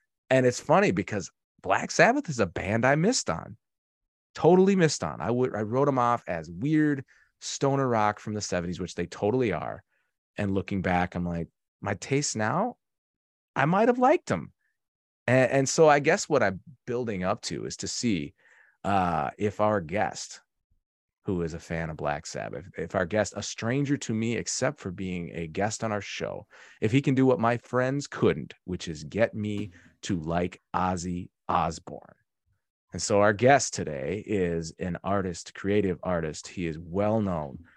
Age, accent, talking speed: 30-49, American, 180 wpm